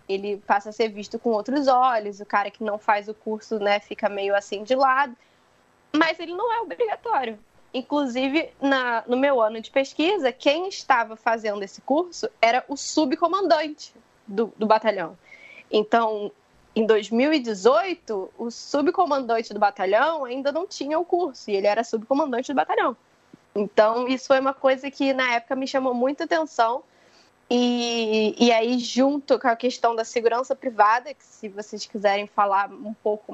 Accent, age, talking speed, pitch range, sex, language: Brazilian, 10-29, 165 wpm, 210-280 Hz, female, Portuguese